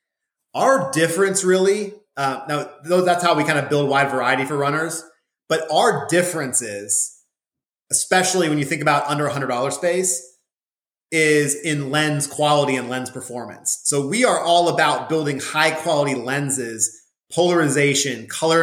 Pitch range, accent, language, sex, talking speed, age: 140-170 Hz, American, English, male, 140 wpm, 30-49